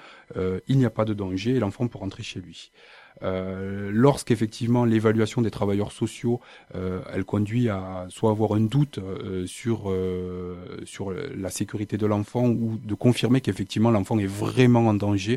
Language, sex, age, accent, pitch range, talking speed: French, male, 30-49, French, 95-120 Hz, 170 wpm